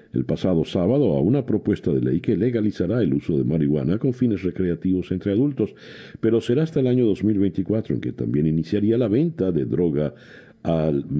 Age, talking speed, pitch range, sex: 60-79, 180 wpm, 75-105 Hz, male